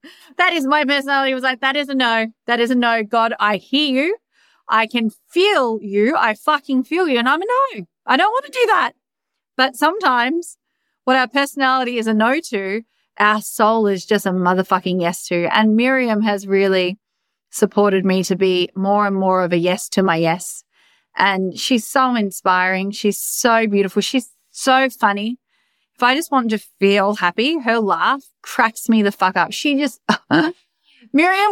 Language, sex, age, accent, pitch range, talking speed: English, female, 30-49, Australian, 195-260 Hz, 185 wpm